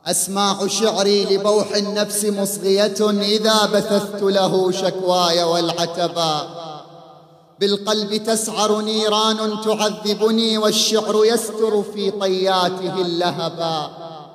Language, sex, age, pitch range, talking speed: Arabic, male, 30-49, 185-225 Hz, 80 wpm